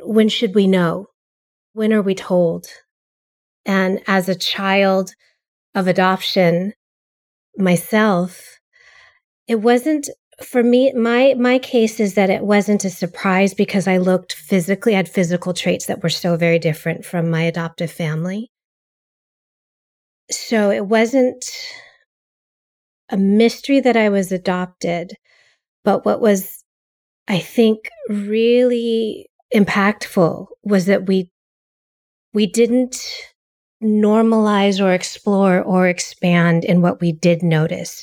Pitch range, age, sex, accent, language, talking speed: 180-225 Hz, 30-49, female, American, English, 120 wpm